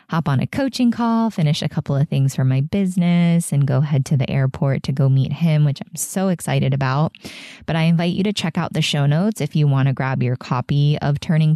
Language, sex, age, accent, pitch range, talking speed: English, female, 20-39, American, 135-165 Hz, 245 wpm